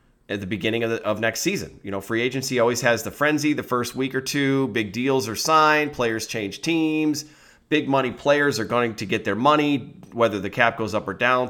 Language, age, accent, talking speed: English, 30-49, American, 230 wpm